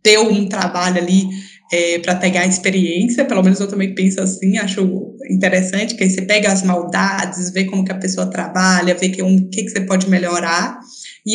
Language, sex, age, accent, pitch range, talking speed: Portuguese, female, 20-39, Brazilian, 180-215 Hz, 205 wpm